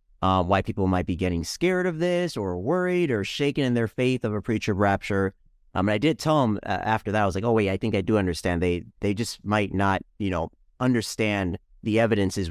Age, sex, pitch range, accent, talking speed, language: 30-49, male, 90-115 Hz, American, 240 wpm, English